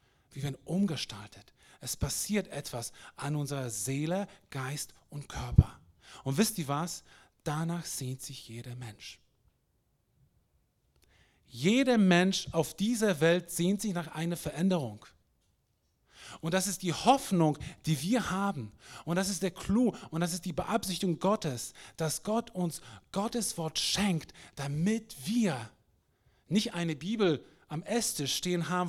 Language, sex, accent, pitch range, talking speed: German, male, German, 145-200 Hz, 135 wpm